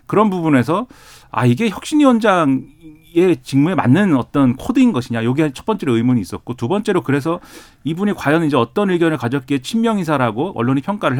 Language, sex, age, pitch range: Korean, male, 40-59, 115-150 Hz